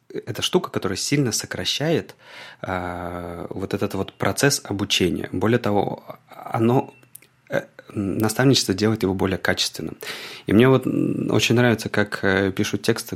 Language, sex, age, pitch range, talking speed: Russian, male, 20-39, 95-125 Hz, 130 wpm